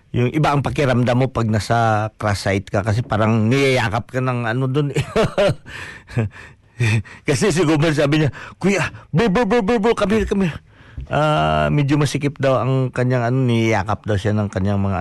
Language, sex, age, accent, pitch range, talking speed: Filipino, male, 50-69, native, 110-155 Hz, 165 wpm